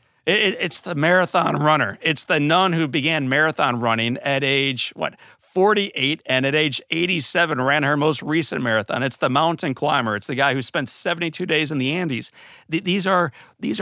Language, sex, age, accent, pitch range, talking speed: English, male, 40-59, American, 115-155 Hz, 180 wpm